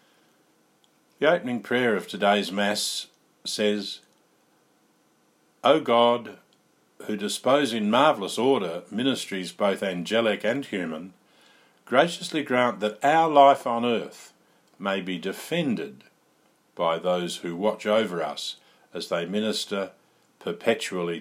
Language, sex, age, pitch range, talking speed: English, male, 50-69, 95-140 Hz, 110 wpm